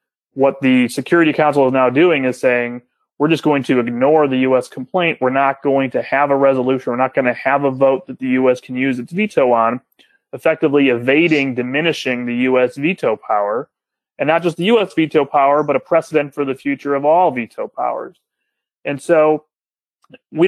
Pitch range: 125-150 Hz